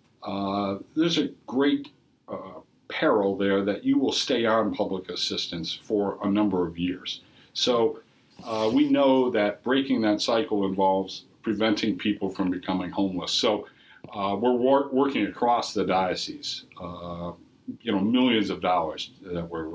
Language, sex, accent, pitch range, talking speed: English, male, American, 95-125 Hz, 145 wpm